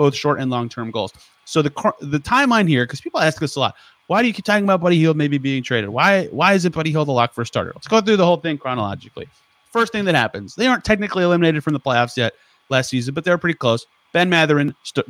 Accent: American